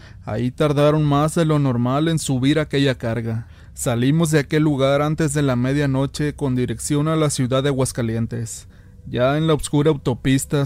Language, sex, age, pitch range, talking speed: Spanish, male, 30-49, 115-145 Hz, 170 wpm